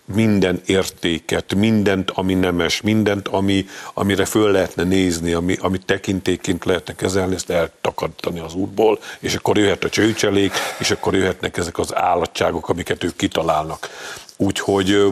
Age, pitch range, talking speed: 50-69, 90-105 Hz, 135 wpm